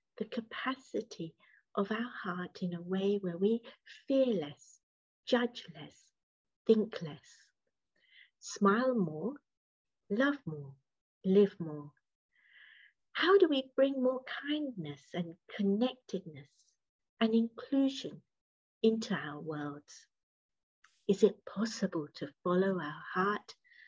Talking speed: 105 wpm